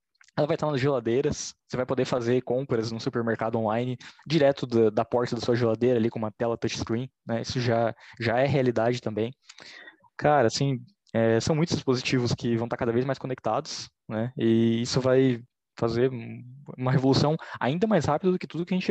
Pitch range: 115-140 Hz